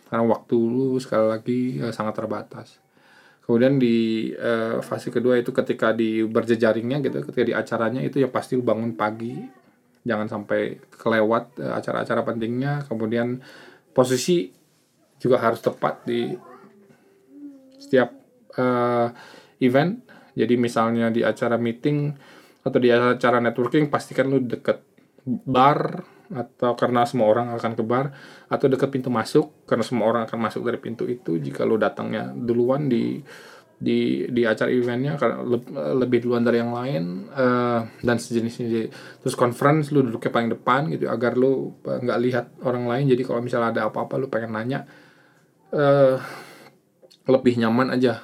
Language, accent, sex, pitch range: Indonesian, native, male, 115-130 Hz